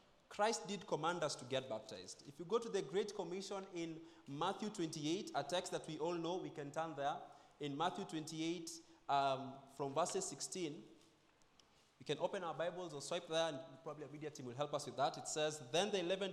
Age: 20-39